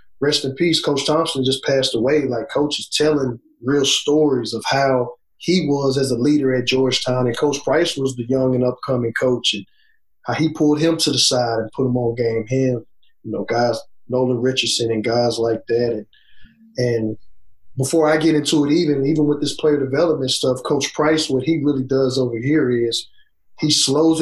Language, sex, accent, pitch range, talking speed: English, male, American, 125-155 Hz, 195 wpm